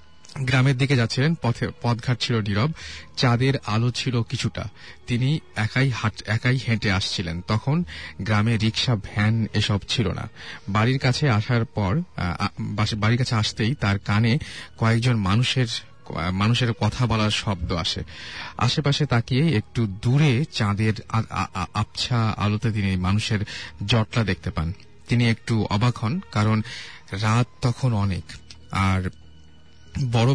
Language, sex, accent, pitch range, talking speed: English, male, Indian, 100-125 Hz, 95 wpm